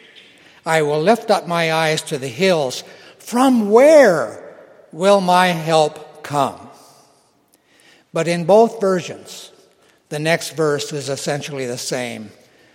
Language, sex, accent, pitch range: English, male, American, 145-195 Hz